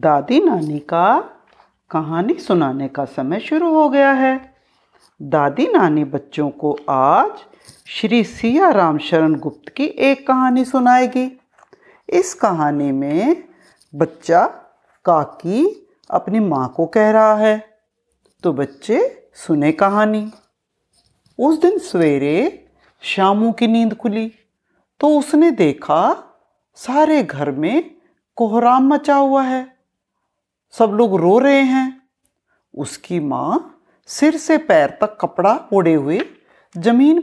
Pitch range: 180-295 Hz